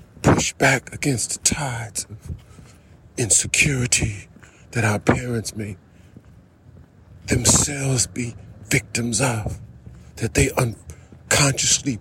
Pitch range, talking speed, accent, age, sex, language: 95-160 Hz, 90 wpm, American, 50-69, male, English